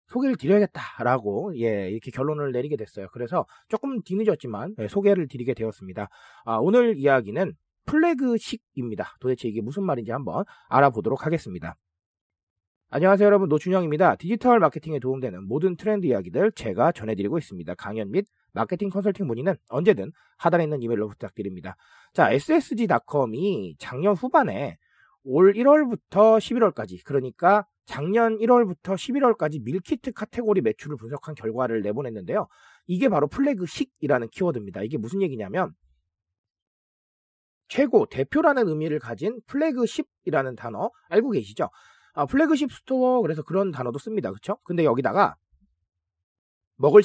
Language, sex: Korean, male